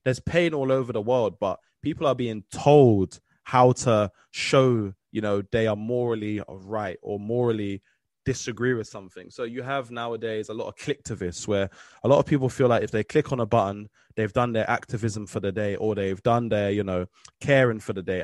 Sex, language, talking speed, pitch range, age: male, English, 205 wpm, 105-130 Hz, 20-39